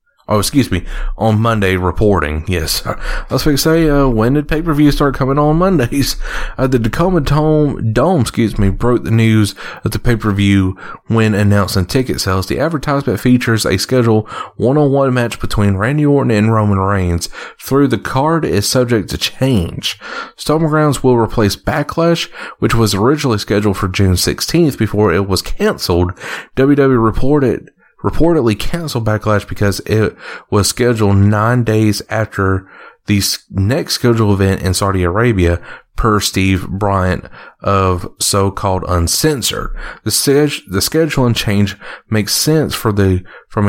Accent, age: American, 30-49